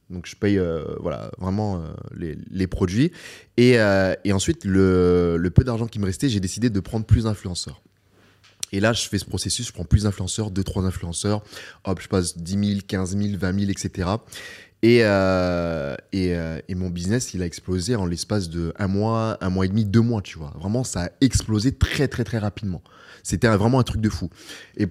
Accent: French